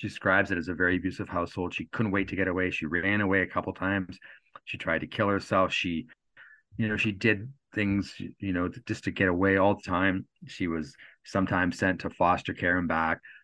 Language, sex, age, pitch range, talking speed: English, male, 40-59, 90-115 Hz, 220 wpm